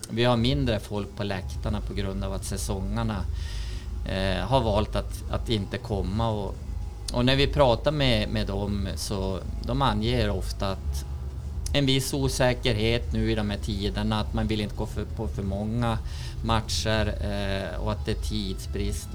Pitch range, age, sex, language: 95-115 Hz, 30-49, male, Swedish